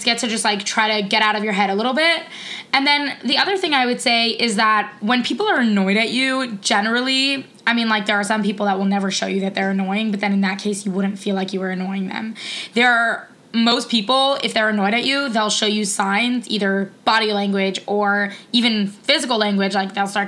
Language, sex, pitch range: English, female, 200-245 Hz